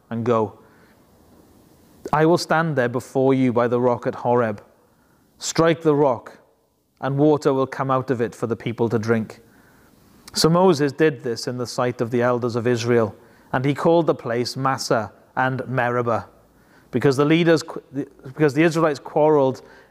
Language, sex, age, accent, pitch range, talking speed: English, male, 30-49, British, 125-155 Hz, 165 wpm